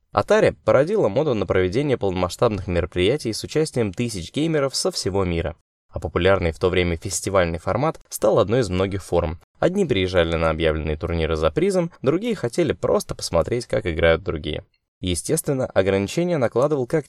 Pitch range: 85-135 Hz